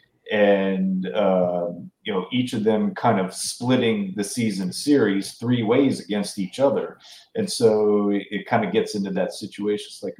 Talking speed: 175 wpm